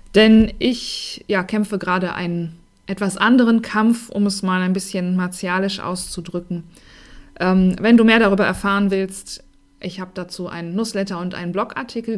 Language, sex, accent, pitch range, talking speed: German, female, German, 175-220 Hz, 155 wpm